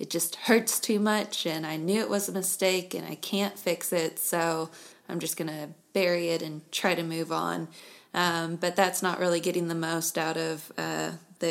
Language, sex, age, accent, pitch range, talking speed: English, female, 20-39, American, 165-180 Hz, 210 wpm